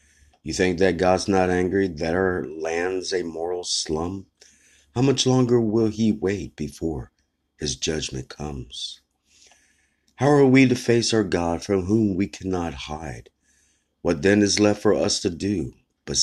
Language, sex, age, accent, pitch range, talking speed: English, male, 50-69, American, 75-100 Hz, 160 wpm